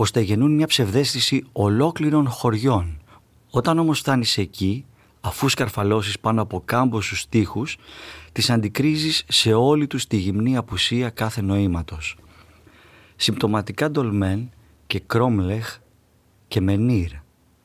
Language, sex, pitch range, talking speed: Greek, male, 100-135 Hz, 110 wpm